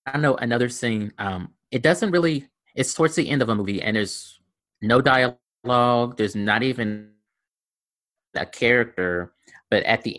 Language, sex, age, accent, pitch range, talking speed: English, male, 30-49, American, 100-125 Hz, 160 wpm